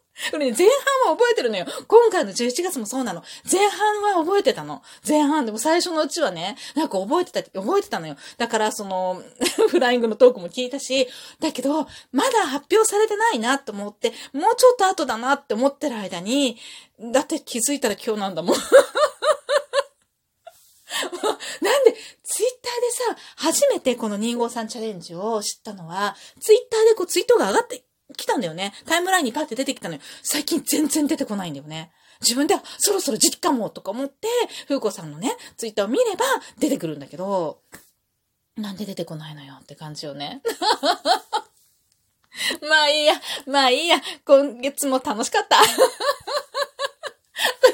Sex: female